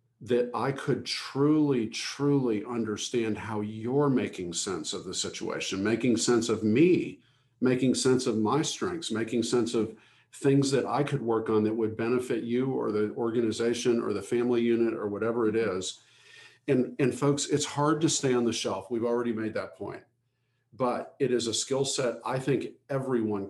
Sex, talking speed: male, 180 wpm